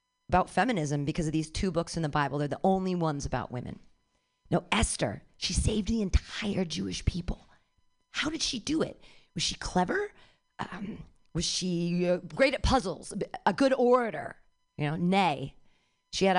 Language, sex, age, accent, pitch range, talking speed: English, female, 40-59, American, 170-255 Hz, 170 wpm